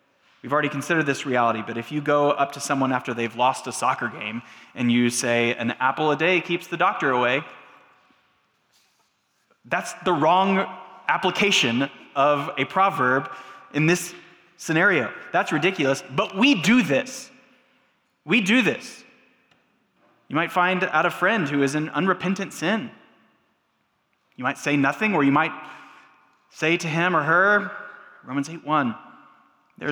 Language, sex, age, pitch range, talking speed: English, male, 20-39, 145-215 Hz, 150 wpm